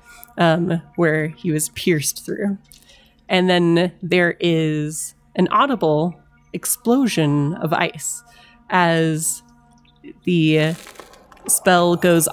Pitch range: 155-185 Hz